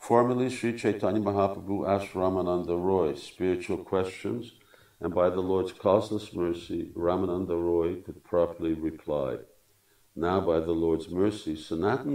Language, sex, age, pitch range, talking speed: Hungarian, male, 50-69, 80-100 Hz, 130 wpm